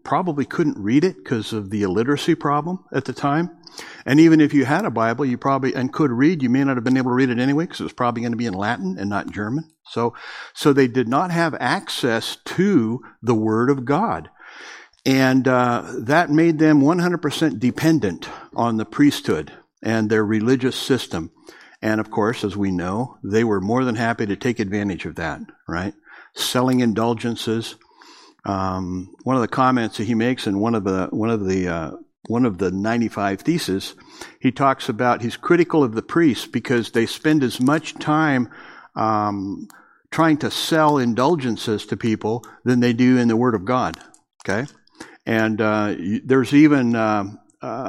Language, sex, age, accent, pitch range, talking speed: English, male, 60-79, American, 110-140 Hz, 185 wpm